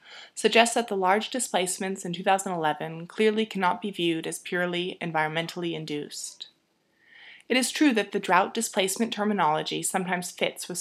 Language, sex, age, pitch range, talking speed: English, female, 20-39, 170-215 Hz, 145 wpm